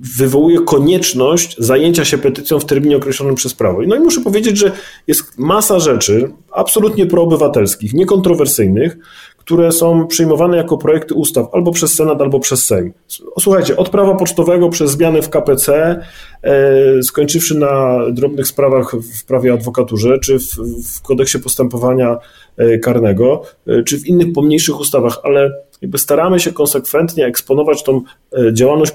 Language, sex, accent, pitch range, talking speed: Polish, male, native, 125-155 Hz, 140 wpm